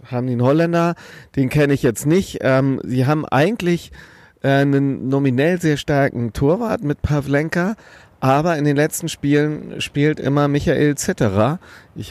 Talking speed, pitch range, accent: 150 wpm, 130-155 Hz, German